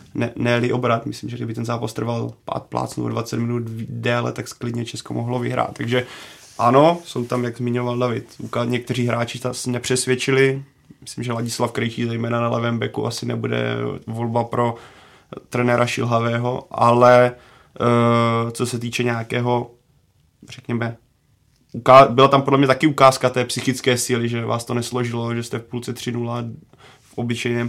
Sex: male